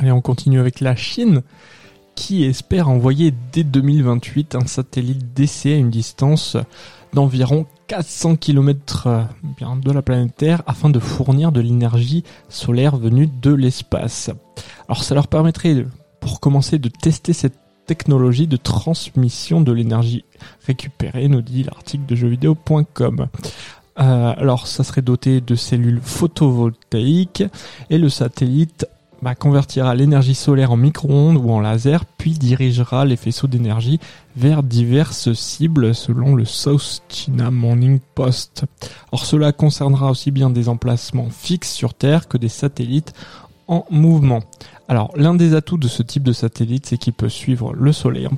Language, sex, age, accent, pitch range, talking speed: French, male, 20-39, French, 120-145 Hz, 145 wpm